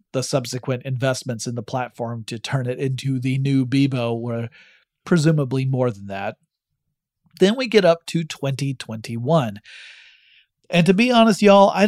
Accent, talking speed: American, 150 wpm